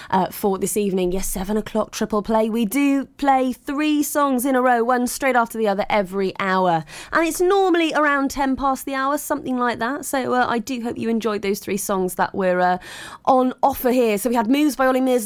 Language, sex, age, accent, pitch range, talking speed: English, female, 20-39, British, 190-255 Hz, 220 wpm